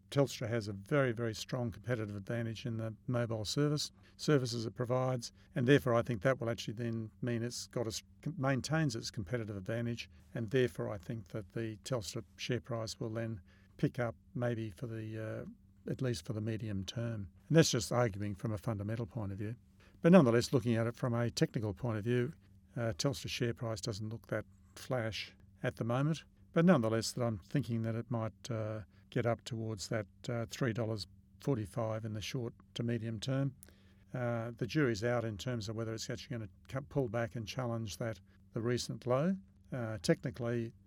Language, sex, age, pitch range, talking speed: English, male, 50-69, 105-125 Hz, 190 wpm